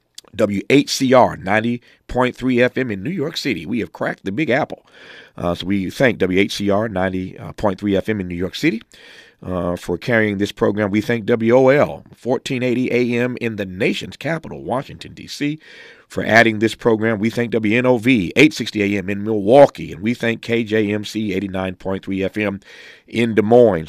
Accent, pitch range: American, 90-115 Hz